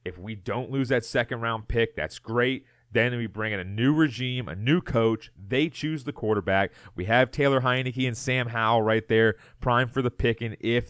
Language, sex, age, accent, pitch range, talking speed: English, male, 30-49, American, 110-130 Hz, 205 wpm